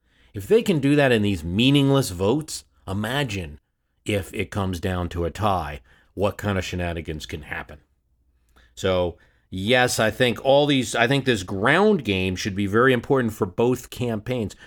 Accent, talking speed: American, 170 wpm